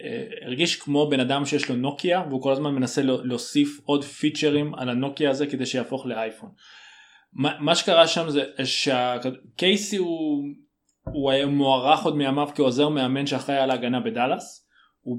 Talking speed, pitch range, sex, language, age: 155 wpm, 125-150 Hz, male, Hebrew, 20-39